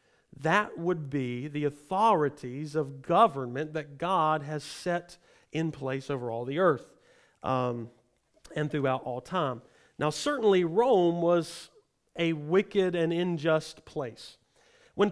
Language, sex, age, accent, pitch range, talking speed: English, male, 40-59, American, 140-180 Hz, 125 wpm